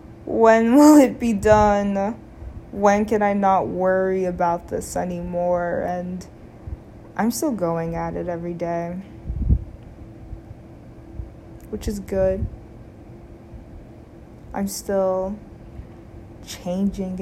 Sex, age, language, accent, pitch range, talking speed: female, 20-39, English, American, 110-185 Hz, 95 wpm